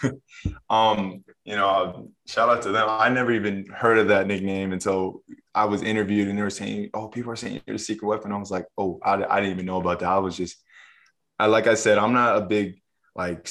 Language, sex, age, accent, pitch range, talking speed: English, male, 20-39, American, 95-105 Hz, 235 wpm